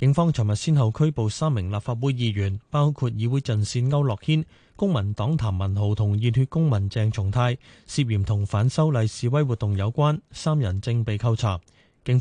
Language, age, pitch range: Chinese, 20-39, 110-140 Hz